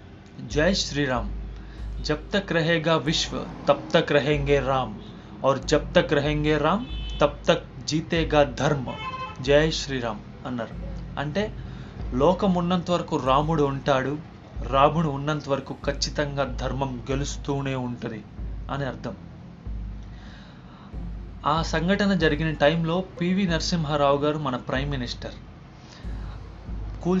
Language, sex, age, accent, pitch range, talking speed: Telugu, male, 30-49, native, 125-160 Hz, 80 wpm